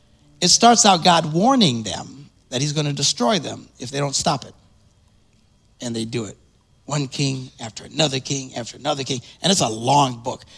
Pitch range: 120-155 Hz